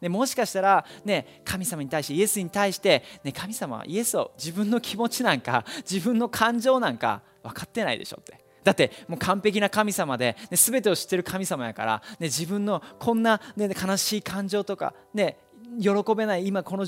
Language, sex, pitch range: Japanese, male, 145-210 Hz